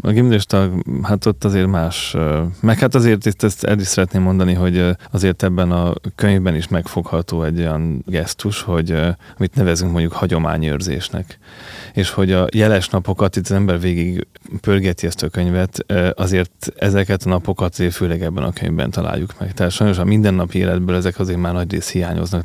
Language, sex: Hungarian, male